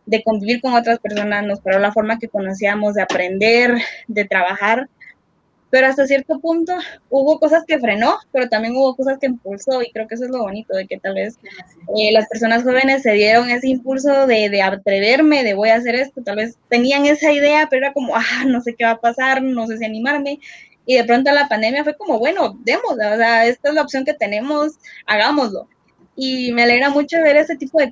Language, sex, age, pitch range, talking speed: Spanish, female, 20-39, 215-265 Hz, 215 wpm